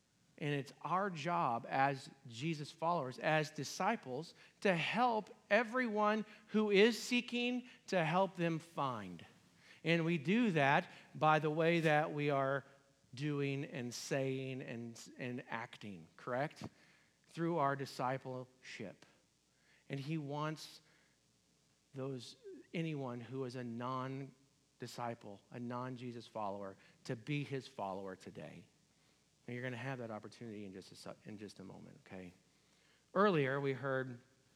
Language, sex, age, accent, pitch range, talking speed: English, male, 50-69, American, 130-170 Hz, 130 wpm